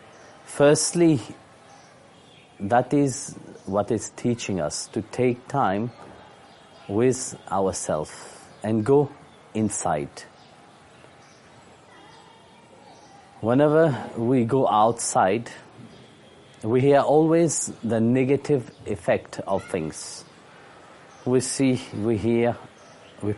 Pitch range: 115-145 Hz